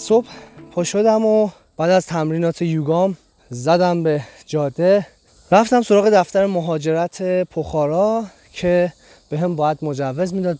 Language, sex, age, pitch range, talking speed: Persian, male, 20-39, 140-190 Hz, 125 wpm